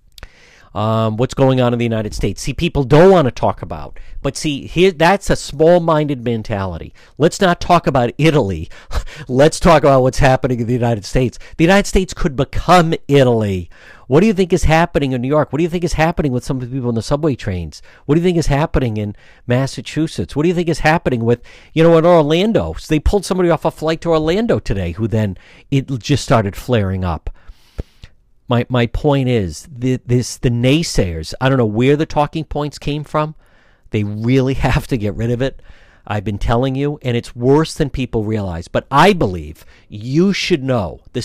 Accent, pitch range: American, 115-155 Hz